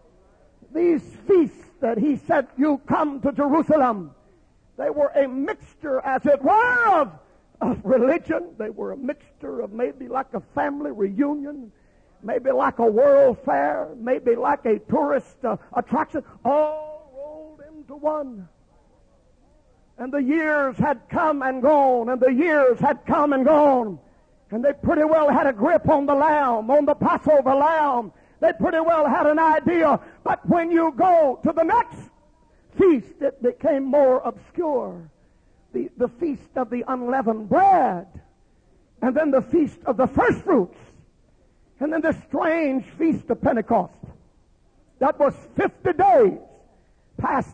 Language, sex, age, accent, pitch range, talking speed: English, male, 50-69, American, 260-315 Hz, 145 wpm